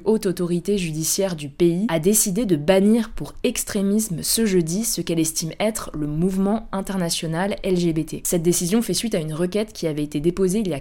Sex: female